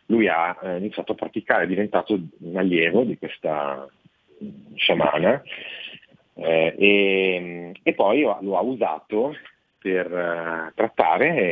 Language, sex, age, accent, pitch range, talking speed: Italian, male, 40-59, native, 80-100 Hz, 110 wpm